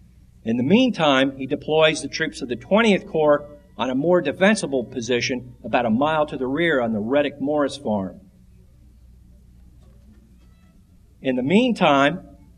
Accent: American